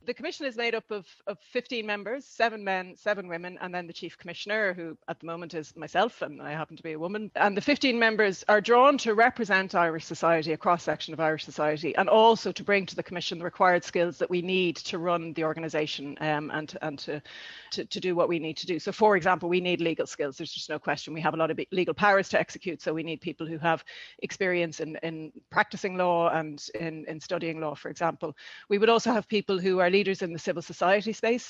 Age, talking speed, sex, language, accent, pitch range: 30-49, 240 wpm, female, English, Irish, 165-210 Hz